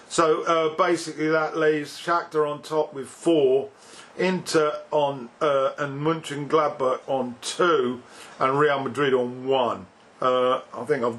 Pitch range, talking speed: 135-160 Hz, 140 wpm